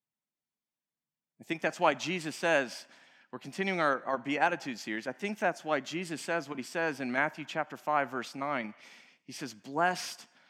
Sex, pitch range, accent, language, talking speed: male, 155-215 Hz, American, English, 170 wpm